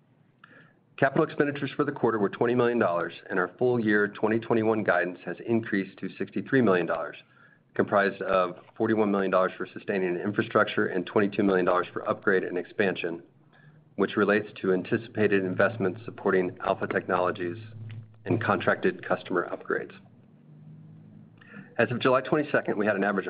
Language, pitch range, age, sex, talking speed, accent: English, 95-120 Hz, 40-59, male, 135 wpm, American